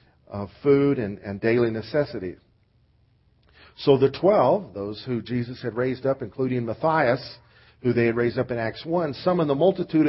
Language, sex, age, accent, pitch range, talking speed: English, male, 50-69, American, 120-165 Hz, 165 wpm